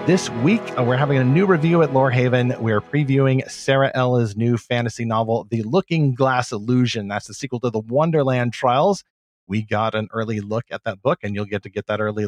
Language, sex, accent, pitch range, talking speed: English, male, American, 115-145 Hz, 205 wpm